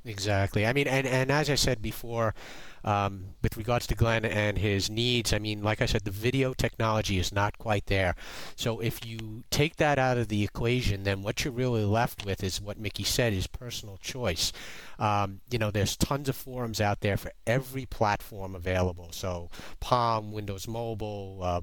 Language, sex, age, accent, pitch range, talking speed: English, male, 30-49, American, 100-120 Hz, 190 wpm